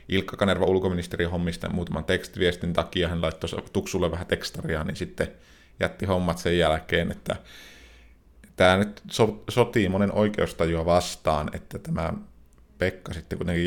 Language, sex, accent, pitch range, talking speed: Finnish, male, native, 80-95 Hz, 135 wpm